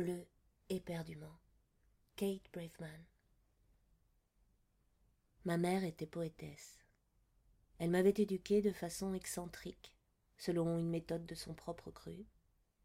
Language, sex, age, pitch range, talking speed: French, female, 20-39, 165-190 Hz, 100 wpm